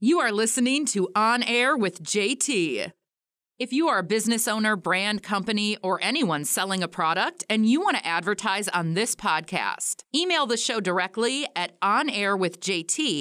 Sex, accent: female, American